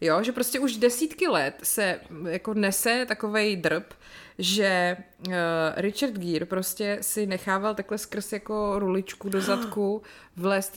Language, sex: Czech, female